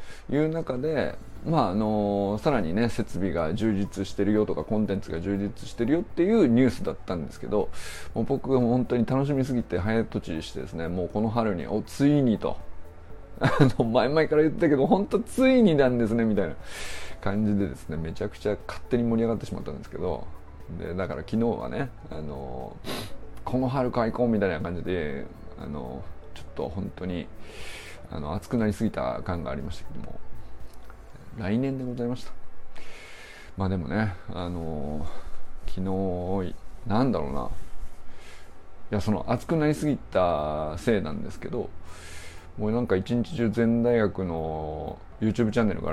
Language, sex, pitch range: Japanese, male, 85-120 Hz